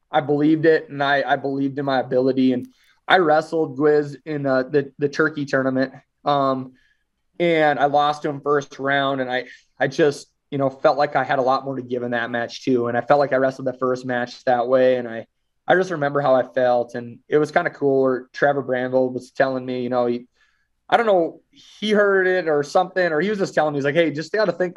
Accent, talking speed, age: American, 245 wpm, 20-39